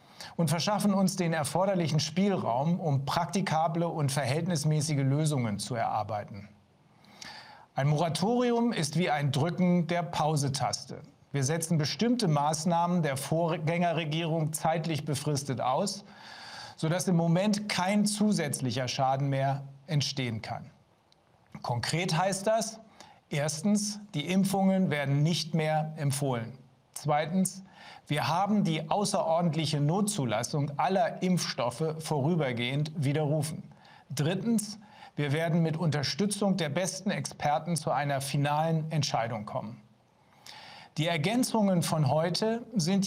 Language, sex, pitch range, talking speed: English, male, 145-185 Hz, 105 wpm